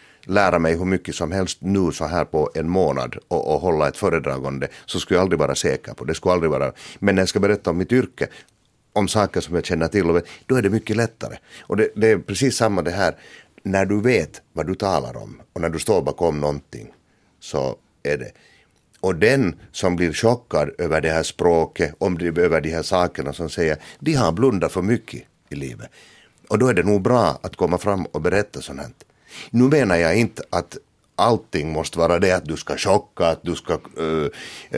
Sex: male